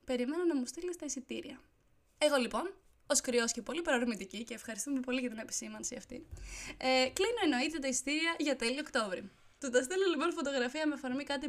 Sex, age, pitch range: female, 20-39, 235-305 Hz